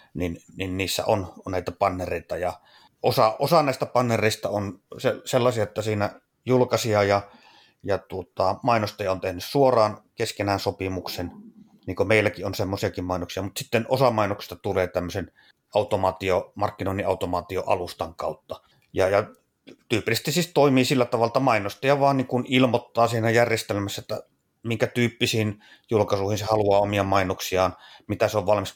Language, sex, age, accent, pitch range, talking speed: Finnish, male, 30-49, native, 95-120 Hz, 145 wpm